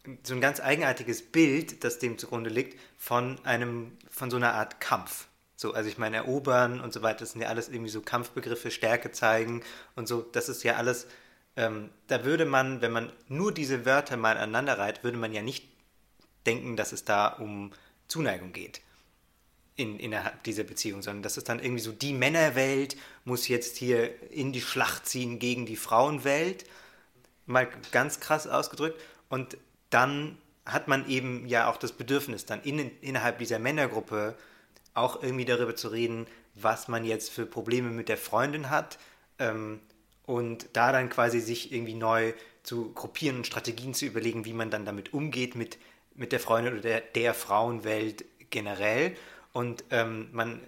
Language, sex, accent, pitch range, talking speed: German, male, German, 115-130 Hz, 170 wpm